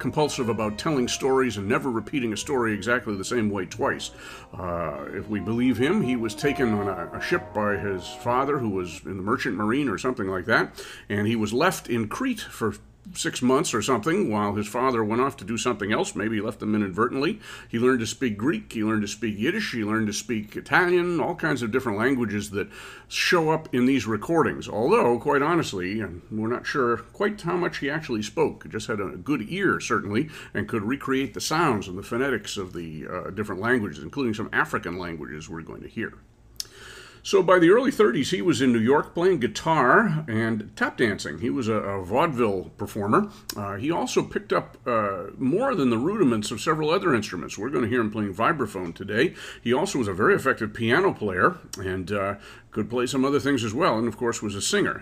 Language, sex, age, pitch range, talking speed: English, male, 50-69, 105-135 Hz, 215 wpm